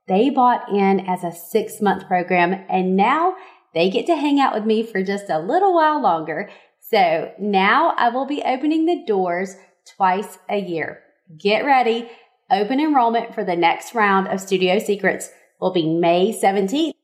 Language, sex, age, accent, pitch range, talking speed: English, female, 30-49, American, 190-260 Hz, 170 wpm